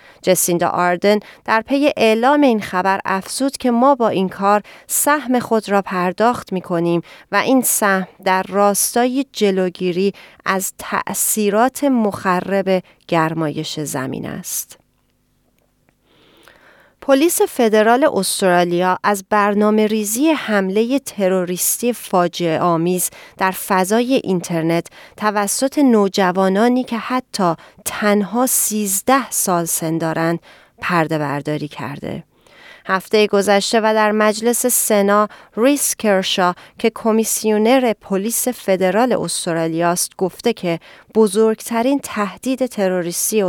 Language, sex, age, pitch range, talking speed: Persian, female, 30-49, 180-230 Hz, 100 wpm